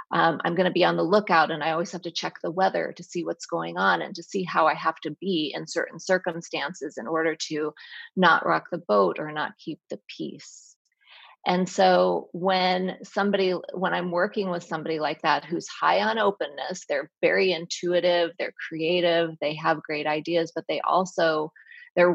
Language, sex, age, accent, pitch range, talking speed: English, female, 30-49, American, 160-185 Hz, 195 wpm